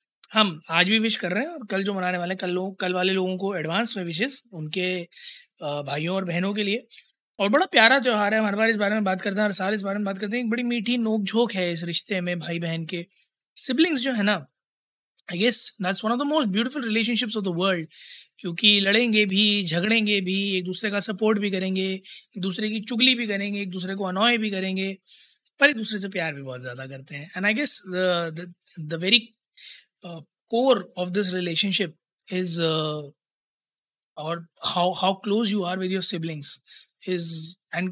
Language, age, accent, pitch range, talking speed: Hindi, 20-39, native, 175-215 Hz, 215 wpm